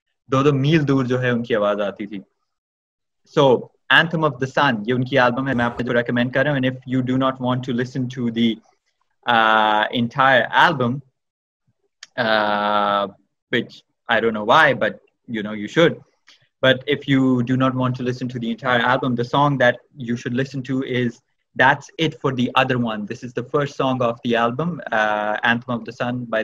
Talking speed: 165 wpm